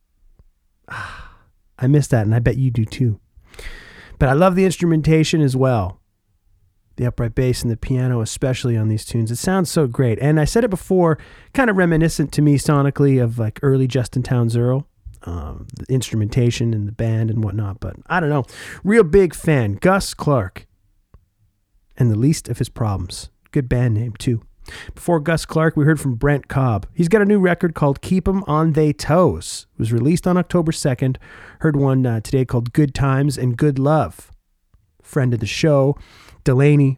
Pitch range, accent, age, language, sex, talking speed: 110-155 Hz, American, 40-59, English, male, 185 wpm